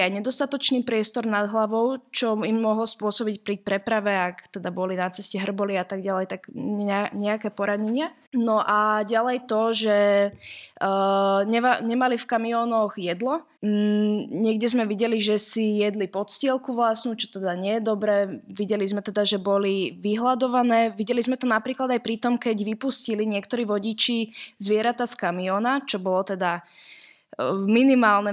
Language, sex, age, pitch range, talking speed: Slovak, female, 20-39, 205-235 Hz, 155 wpm